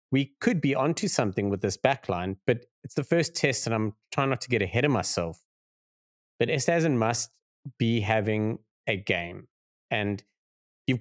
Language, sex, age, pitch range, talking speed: English, male, 30-49, 110-135 Hz, 175 wpm